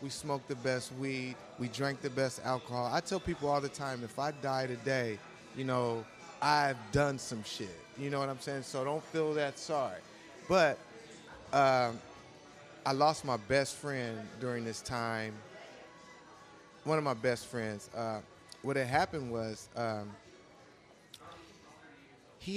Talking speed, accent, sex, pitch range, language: 155 wpm, American, male, 115-140 Hz, English